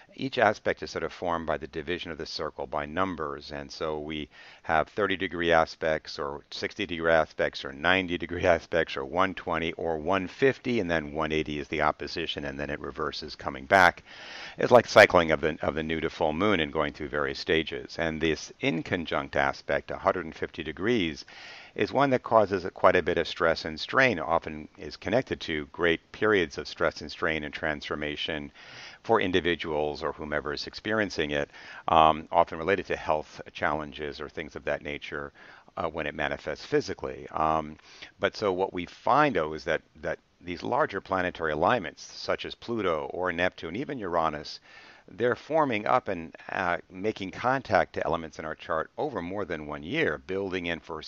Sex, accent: male, American